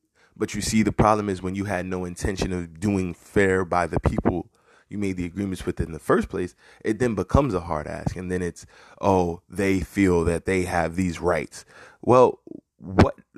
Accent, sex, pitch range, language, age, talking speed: American, male, 85-105 Hz, English, 20-39, 200 wpm